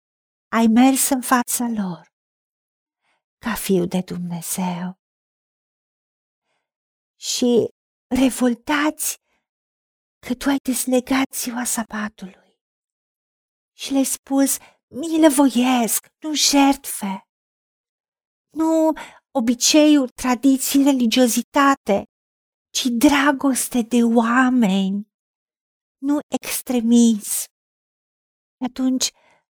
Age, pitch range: 50-69, 220-265 Hz